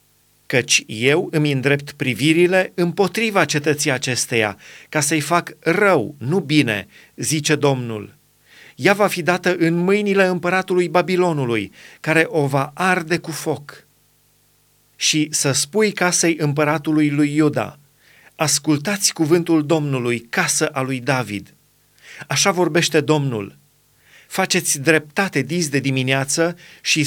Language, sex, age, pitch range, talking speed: Romanian, male, 30-49, 140-175 Hz, 120 wpm